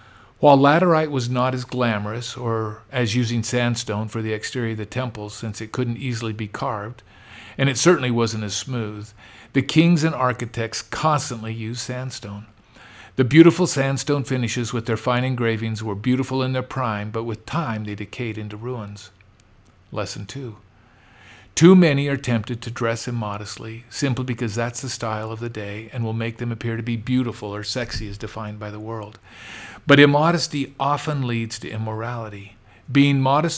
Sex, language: male, English